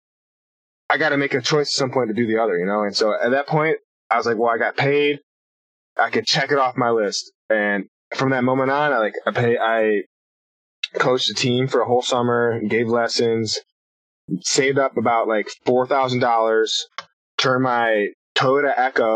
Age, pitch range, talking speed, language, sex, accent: 20-39, 110-125 Hz, 195 wpm, Swedish, male, American